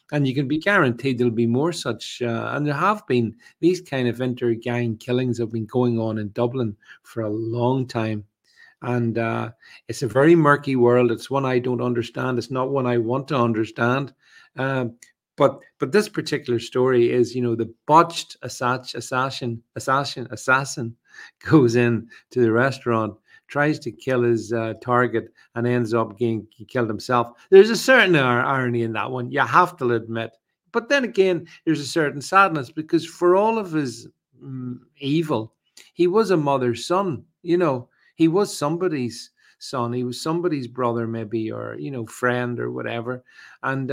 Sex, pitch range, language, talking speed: male, 120-145 Hz, English, 175 wpm